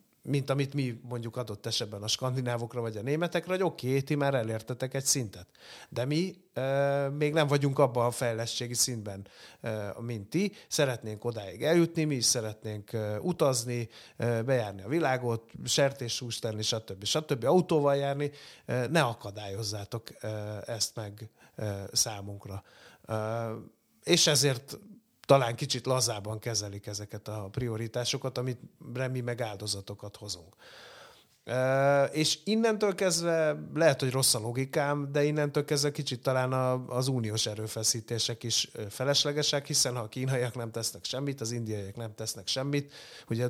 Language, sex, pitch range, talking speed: Hungarian, male, 110-140 Hz, 140 wpm